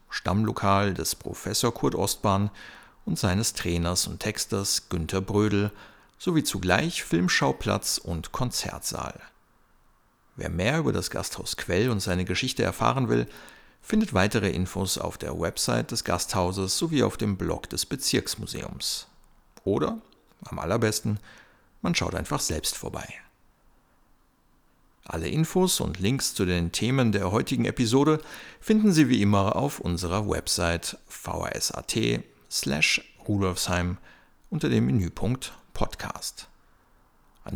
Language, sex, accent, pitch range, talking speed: German, male, German, 90-115 Hz, 120 wpm